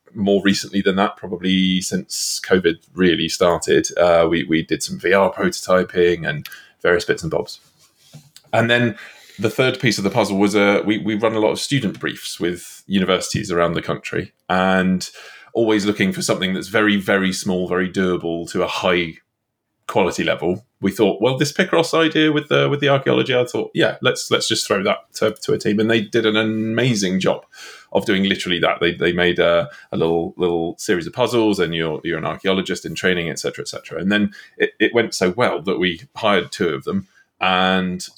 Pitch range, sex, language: 90-110 Hz, male, English